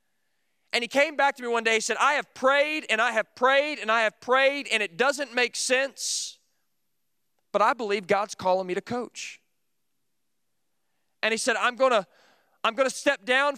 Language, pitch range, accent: English, 210-250 Hz, American